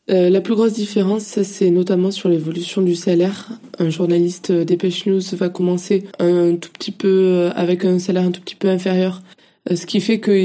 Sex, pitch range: female, 175-190 Hz